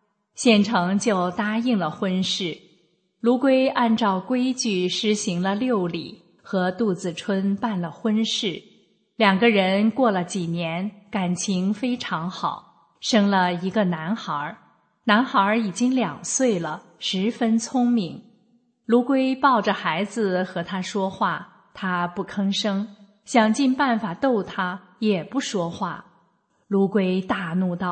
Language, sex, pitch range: English, female, 185-235 Hz